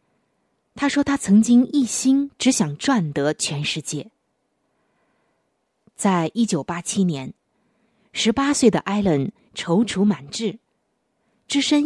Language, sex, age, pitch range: Chinese, female, 20-39, 160-235 Hz